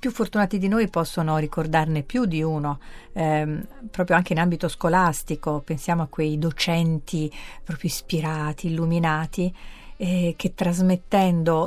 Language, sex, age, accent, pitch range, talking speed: Italian, female, 50-69, native, 155-185 Hz, 130 wpm